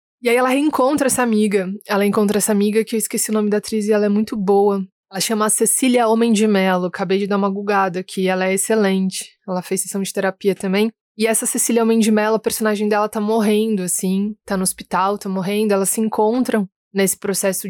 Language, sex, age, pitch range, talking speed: Portuguese, female, 20-39, 200-225 Hz, 225 wpm